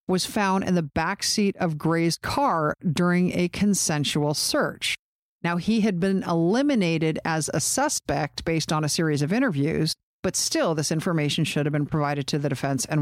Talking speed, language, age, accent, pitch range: 175 wpm, English, 50-69, American, 155-195 Hz